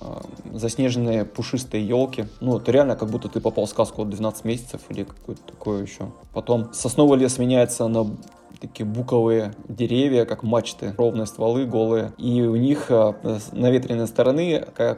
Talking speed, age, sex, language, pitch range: 155 wpm, 20-39, male, Russian, 110-130 Hz